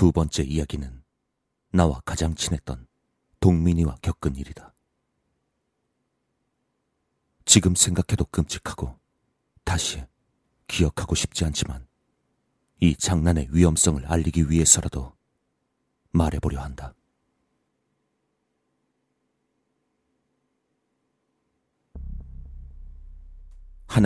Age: 40-59